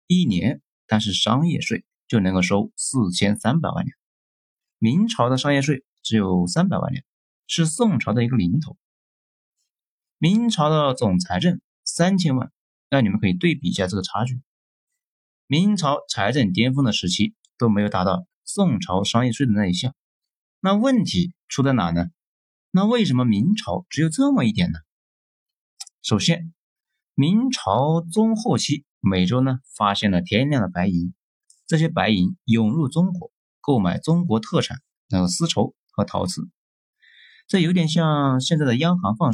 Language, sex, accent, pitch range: Chinese, male, native, 105-180 Hz